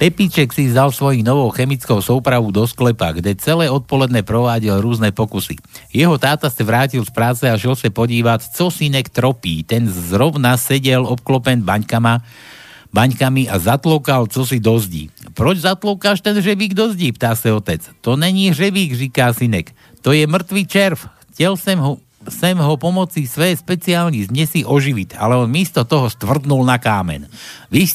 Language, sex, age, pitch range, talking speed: Slovak, male, 60-79, 115-155 Hz, 155 wpm